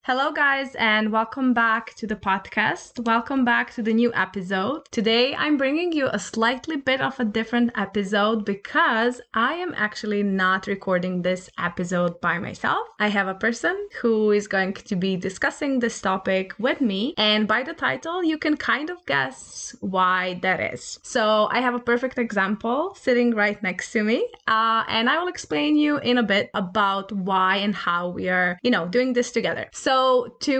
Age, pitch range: 20-39, 195-245 Hz